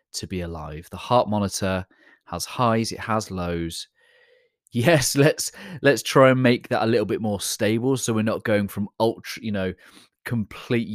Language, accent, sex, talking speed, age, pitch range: English, British, male, 175 wpm, 30-49, 85-110 Hz